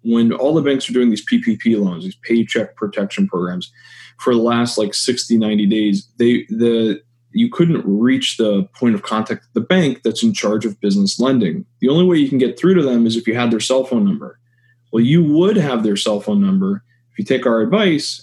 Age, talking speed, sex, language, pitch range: 20-39, 225 wpm, male, English, 115-155 Hz